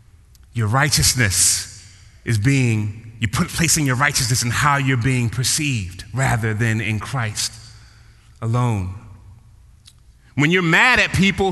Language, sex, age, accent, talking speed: English, male, 30-49, American, 120 wpm